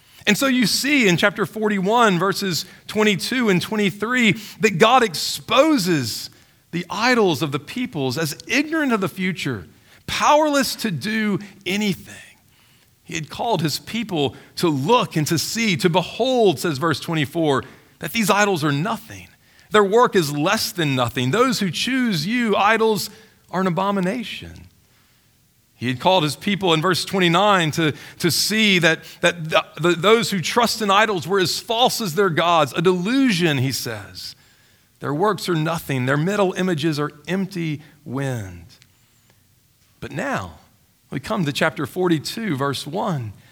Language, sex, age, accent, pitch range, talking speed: English, male, 40-59, American, 145-215 Hz, 155 wpm